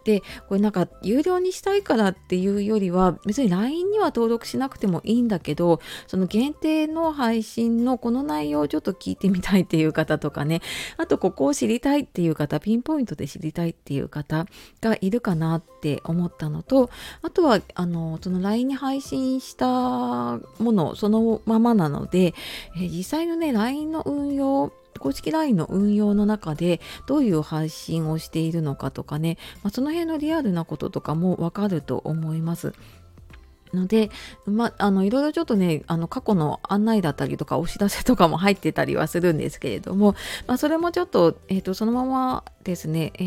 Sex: female